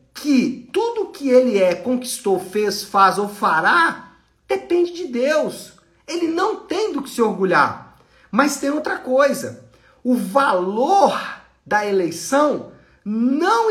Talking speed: 125 wpm